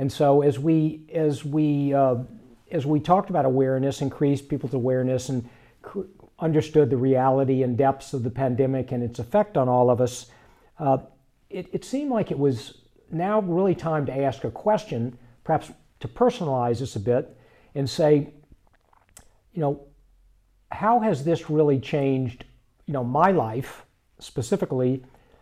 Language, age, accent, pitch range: English, 60-79, American, 125-155 Hz